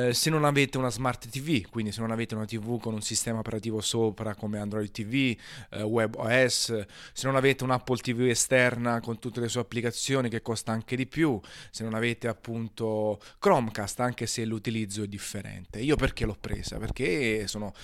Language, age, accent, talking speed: Italian, 30-49, native, 190 wpm